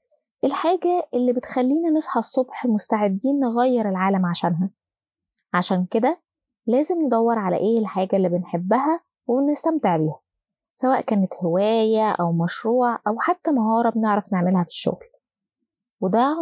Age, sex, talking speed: 20-39, female, 120 wpm